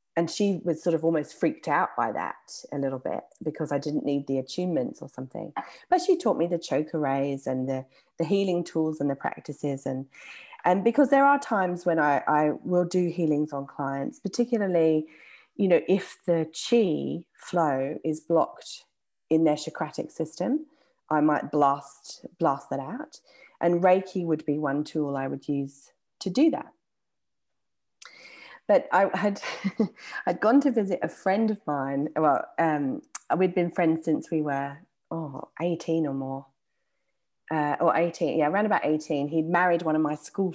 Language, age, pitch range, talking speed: English, 30-49, 150-185 Hz, 175 wpm